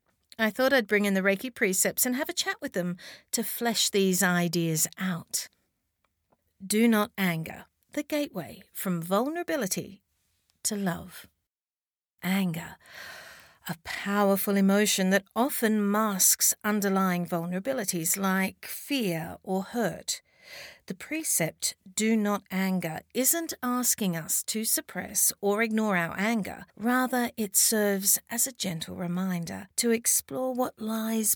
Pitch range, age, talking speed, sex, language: 170-225 Hz, 50-69, 125 wpm, female, English